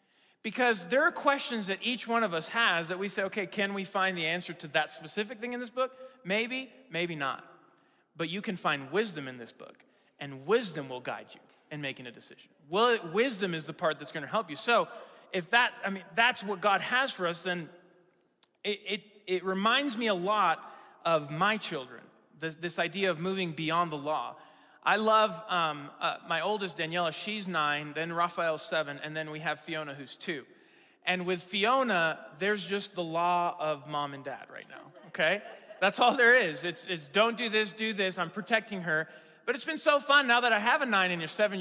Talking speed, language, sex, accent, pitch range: 210 wpm, English, male, American, 160-225 Hz